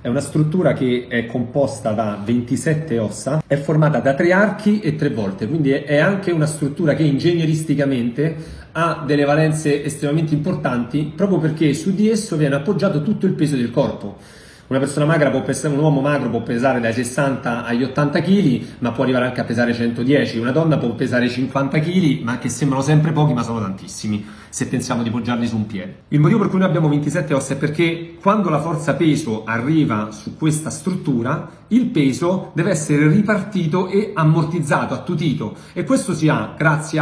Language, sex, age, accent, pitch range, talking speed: Italian, male, 40-59, native, 130-170 Hz, 190 wpm